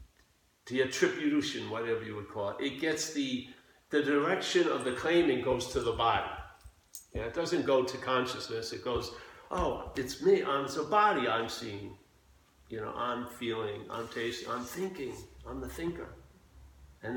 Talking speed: 165 wpm